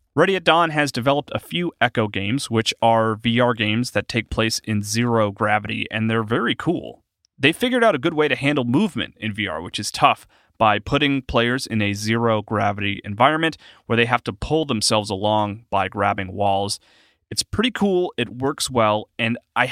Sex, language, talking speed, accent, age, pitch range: male, English, 190 wpm, American, 30-49, 105-130 Hz